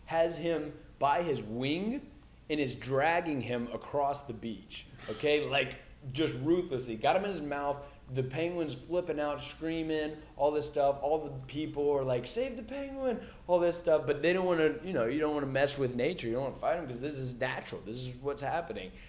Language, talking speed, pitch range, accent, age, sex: English, 215 wpm, 115-145 Hz, American, 20-39, male